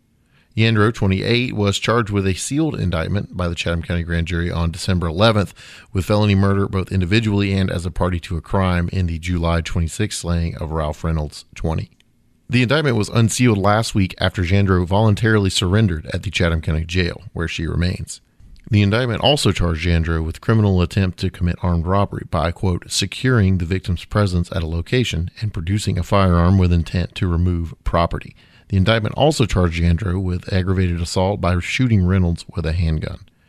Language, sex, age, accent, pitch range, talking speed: English, male, 30-49, American, 90-110 Hz, 180 wpm